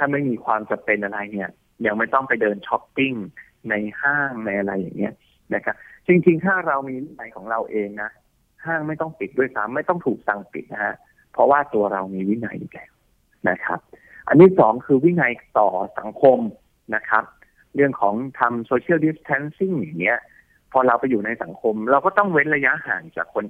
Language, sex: Thai, male